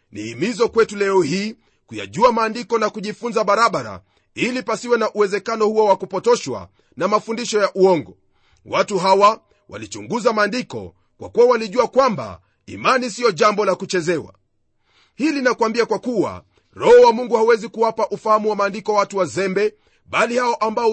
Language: Swahili